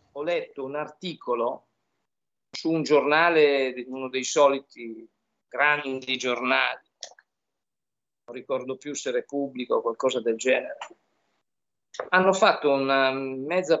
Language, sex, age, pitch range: Italian, male, 50-69, 140-205 Hz